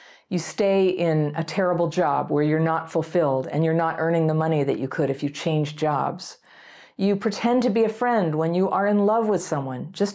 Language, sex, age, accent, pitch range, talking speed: English, female, 50-69, American, 150-180 Hz, 220 wpm